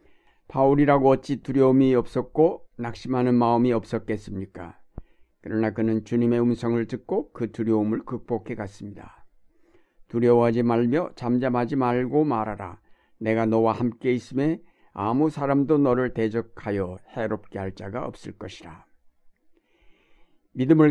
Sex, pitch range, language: male, 115-140 Hz, Korean